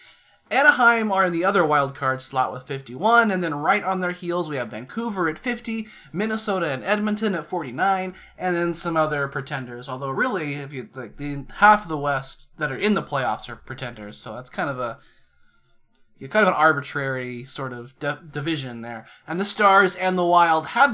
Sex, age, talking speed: male, 30-49, 200 wpm